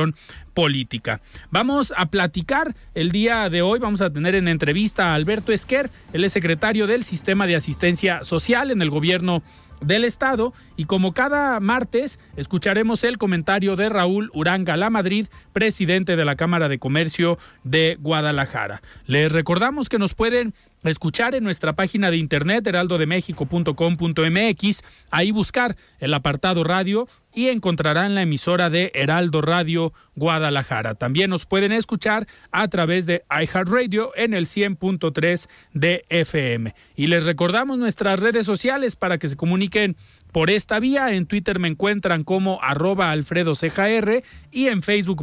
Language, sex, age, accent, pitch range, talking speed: Spanish, male, 40-59, Mexican, 165-215 Hz, 145 wpm